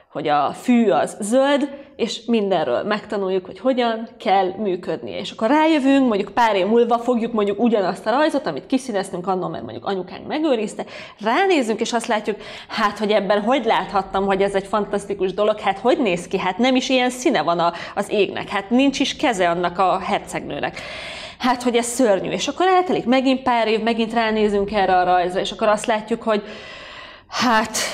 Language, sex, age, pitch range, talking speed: Hungarian, female, 30-49, 185-235 Hz, 185 wpm